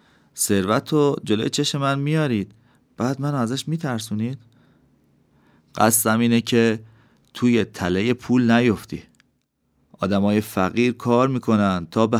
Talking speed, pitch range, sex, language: 115 wpm, 100-120 Hz, male, Persian